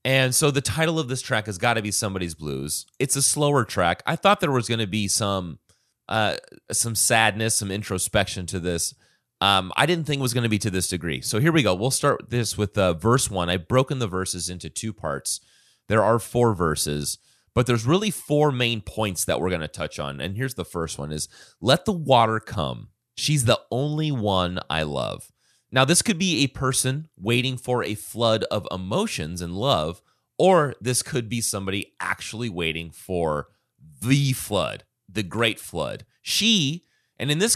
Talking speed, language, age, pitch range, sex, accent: 200 wpm, English, 30-49, 90-130 Hz, male, American